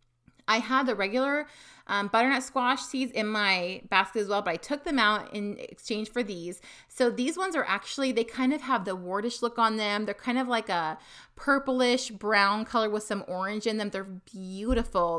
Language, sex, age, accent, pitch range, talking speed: English, female, 30-49, American, 190-235 Hz, 200 wpm